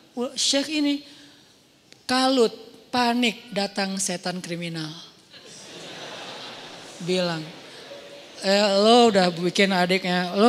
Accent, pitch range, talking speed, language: native, 200-275 Hz, 80 wpm, Indonesian